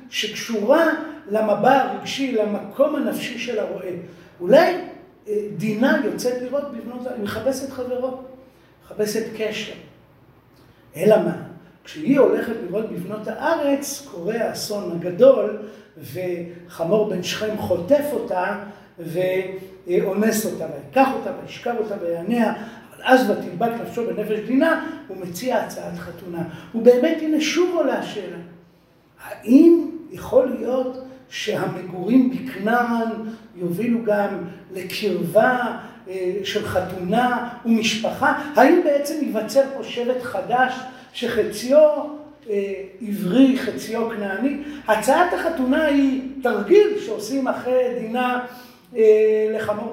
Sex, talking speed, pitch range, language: male, 95 wpm, 205-275 Hz, Hebrew